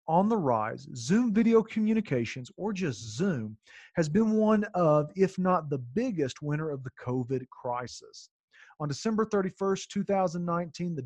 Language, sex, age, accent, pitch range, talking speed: English, male, 40-59, American, 130-195 Hz, 145 wpm